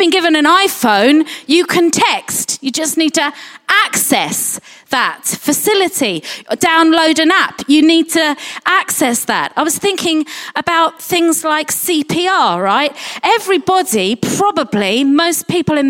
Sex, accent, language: female, British, English